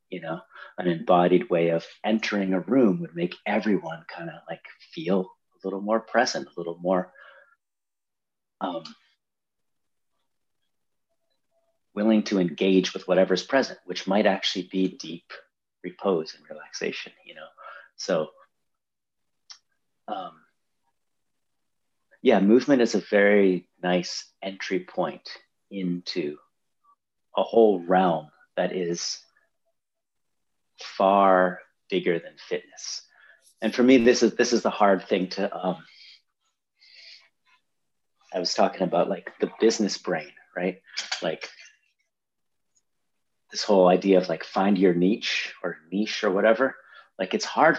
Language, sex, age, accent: English, male, 40-59, American